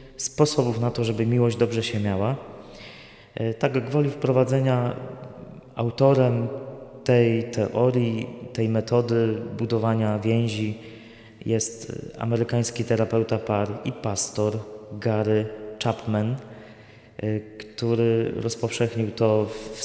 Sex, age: male, 20-39